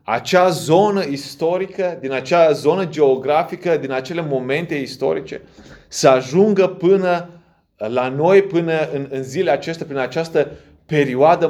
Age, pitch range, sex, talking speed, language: 30-49, 135-175 Hz, male, 125 wpm, Romanian